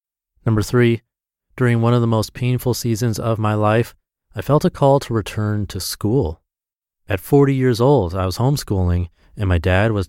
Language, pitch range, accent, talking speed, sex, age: English, 90-115 Hz, American, 185 wpm, male, 30-49